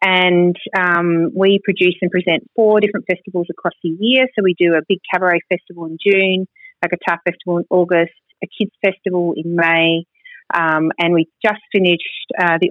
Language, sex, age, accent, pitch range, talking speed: English, female, 30-49, Australian, 165-195 Hz, 180 wpm